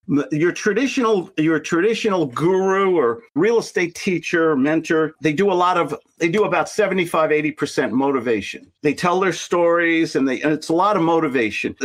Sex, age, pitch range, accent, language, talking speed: male, 50-69, 155-210 Hz, American, English, 160 wpm